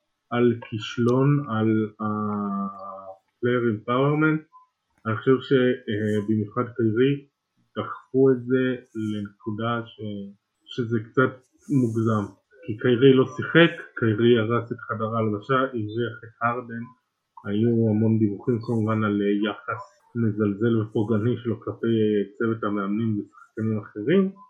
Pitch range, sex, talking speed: 110-135 Hz, male, 105 wpm